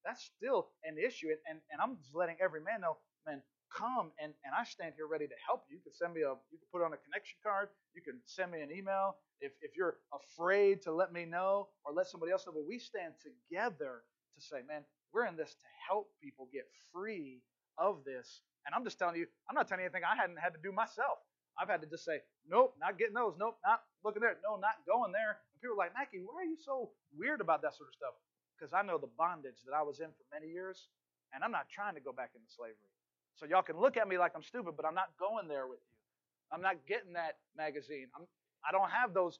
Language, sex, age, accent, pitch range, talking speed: English, male, 30-49, American, 160-240 Hz, 255 wpm